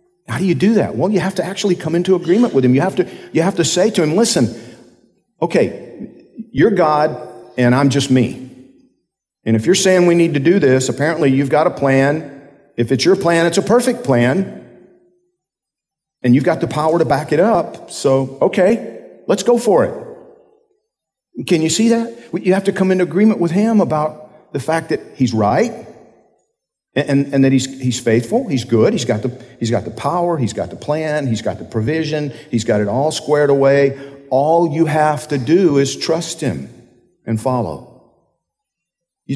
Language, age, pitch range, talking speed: English, 50-69, 125-175 Hz, 190 wpm